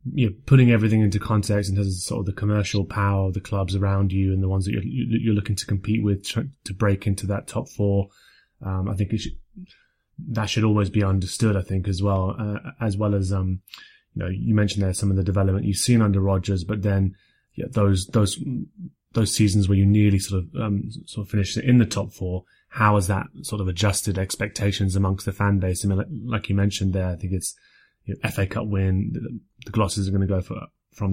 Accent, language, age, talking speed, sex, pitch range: British, English, 20-39, 230 wpm, male, 95-110 Hz